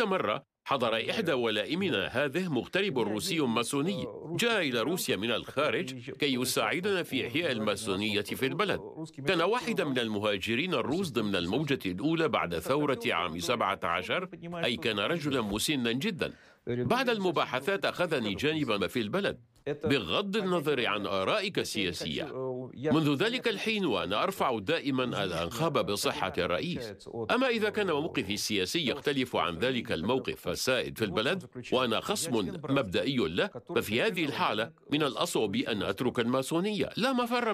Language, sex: English, male